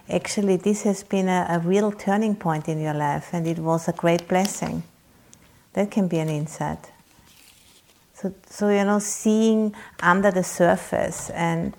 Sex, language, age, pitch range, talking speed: female, English, 50-69, 170-200 Hz, 165 wpm